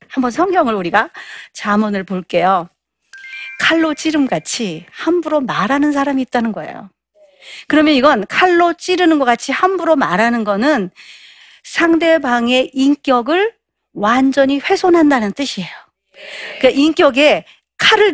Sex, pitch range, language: female, 215-310 Hz, Korean